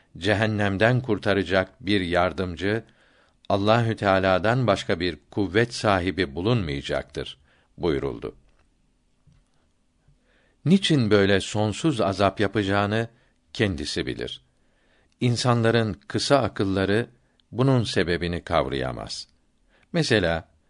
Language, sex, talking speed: Turkish, male, 75 wpm